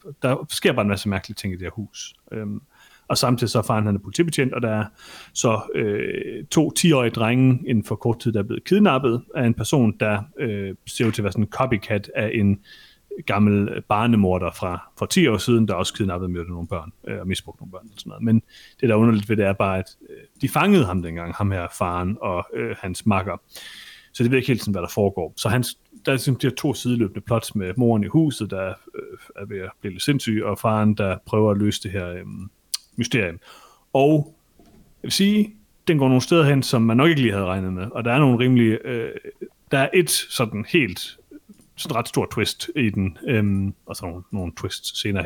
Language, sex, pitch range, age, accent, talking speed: Danish, male, 100-130 Hz, 30-49, native, 230 wpm